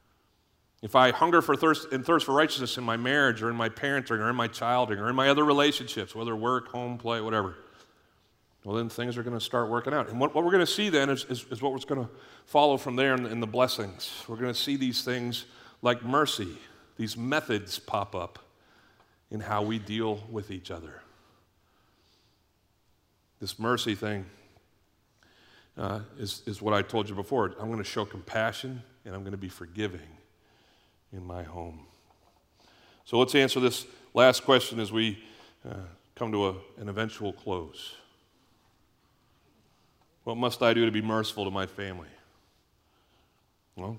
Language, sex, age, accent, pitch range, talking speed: English, male, 40-59, American, 100-125 Hz, 175 wpm